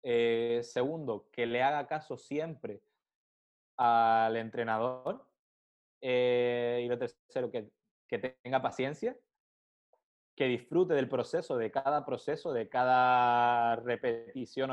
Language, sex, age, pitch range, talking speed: Spanish, male, 20-39, 115-130 Hz, 110 wpm